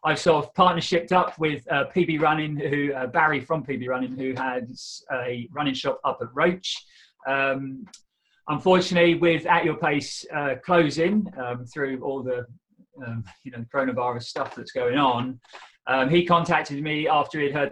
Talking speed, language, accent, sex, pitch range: 170 wpm, English, British, male, 125-165 Hz